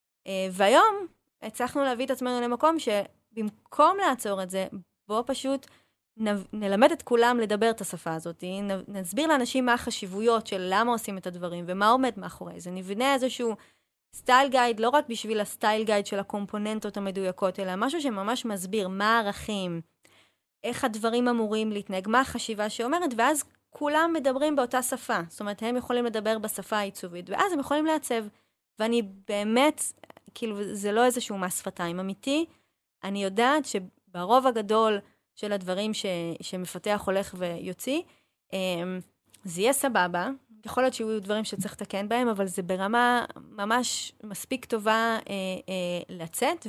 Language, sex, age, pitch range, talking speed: Hebrew, female, 20-39, 195-240 Hz, 135 wpm